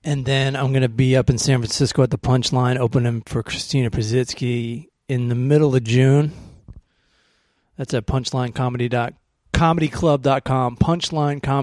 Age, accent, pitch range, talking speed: 30-49, American, 125-150 Hz, 125 wpm